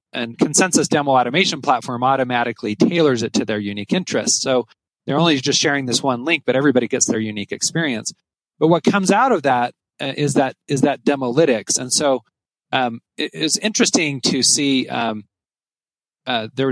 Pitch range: 115-145 Hz